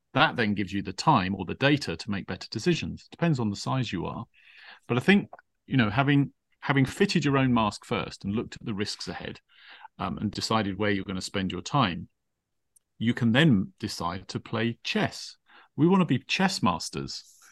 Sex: male